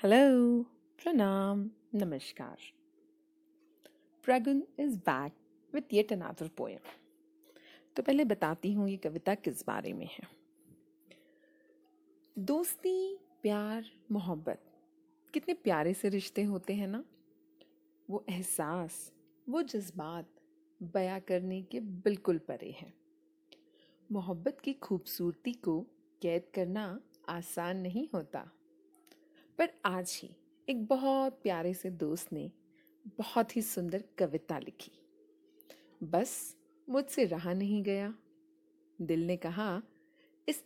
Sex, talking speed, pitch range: female, 105 wpm, 180-295 Hz